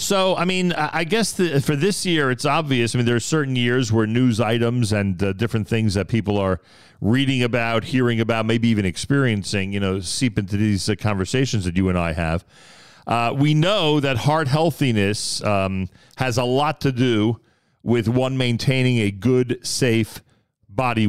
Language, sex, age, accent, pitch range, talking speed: English, male, 40-59, American, 100-130 Hz, 180 wpm